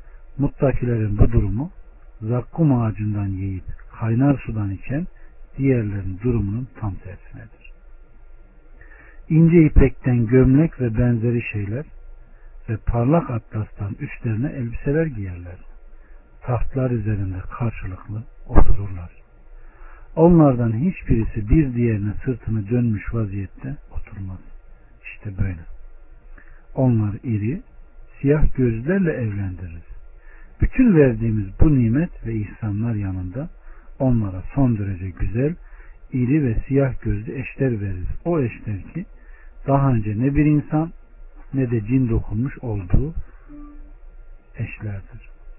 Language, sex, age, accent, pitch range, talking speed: Turkish, male, 60-79, native, 100-135 Hz, 100 wpm